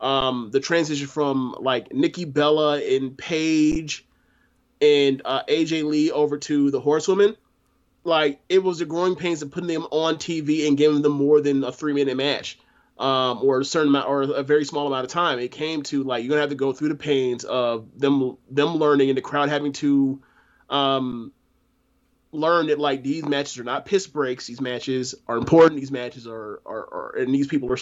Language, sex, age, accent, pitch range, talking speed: English, male, 20-39, American, 140-170 Hz, 200 wpm